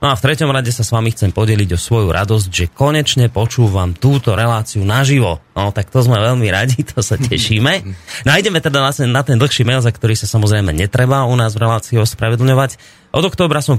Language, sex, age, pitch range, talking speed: Slovak, male, 30-49, 105-135 Hz, 215 wpm